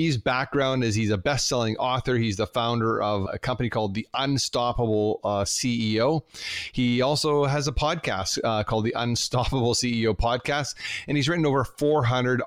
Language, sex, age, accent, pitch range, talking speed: English, male, 30-49, American, 110-130 Hz, 165 wpm